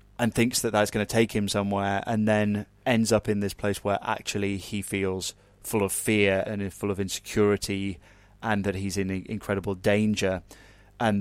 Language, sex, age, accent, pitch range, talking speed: English, male, 20-39, British, 100-110 Hz, 180 wpm